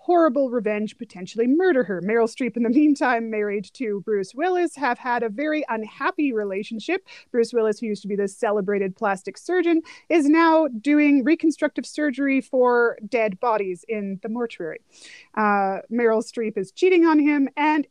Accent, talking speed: American, 165 wpm